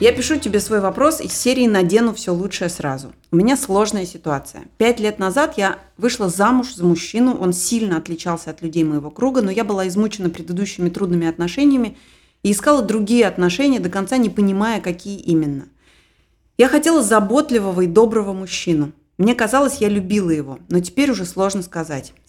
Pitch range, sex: 180-235 Hz, female